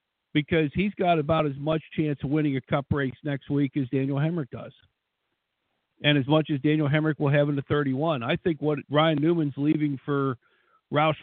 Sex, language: male, English